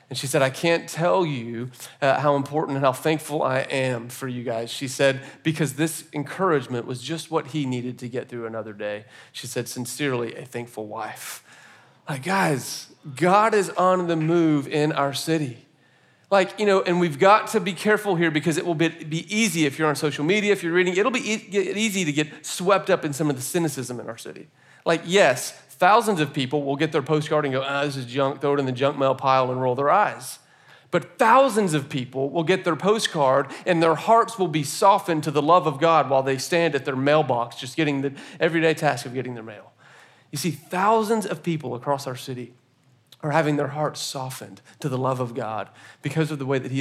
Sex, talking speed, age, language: male, 220 wpm, 40-59, English